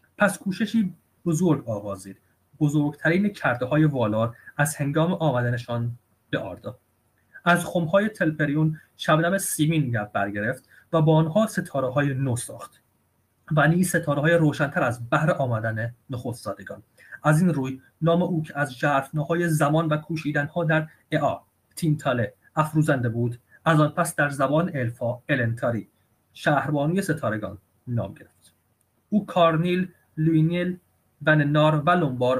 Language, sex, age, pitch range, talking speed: Persian, male, 30-49, 120-160 Hz, 125 wpm